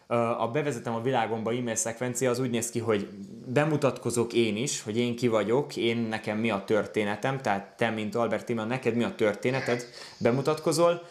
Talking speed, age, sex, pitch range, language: 180 wpm, 20-39, male, 110-130 Hz, Hungarian